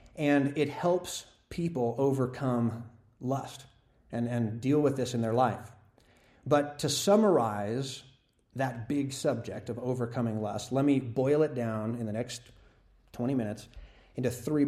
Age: 30-49